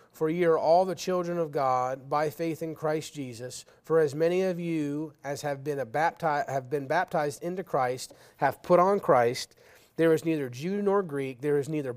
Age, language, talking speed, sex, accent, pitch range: 30-49, English, 190 wpm, male, American, 145-180 Hz